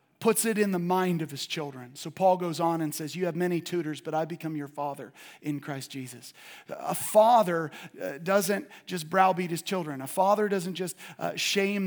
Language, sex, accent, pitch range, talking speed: English, male, American, 175-210 Hz, 190 wpm